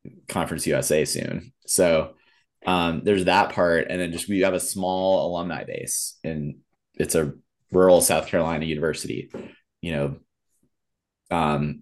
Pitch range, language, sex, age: 80-95 Hz, English, male, 30-49